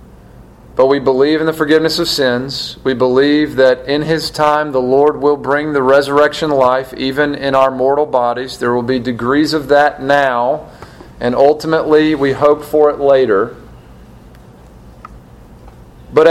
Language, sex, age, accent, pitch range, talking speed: English, male, 40-59, American, 130-170 Hz, 150 wpm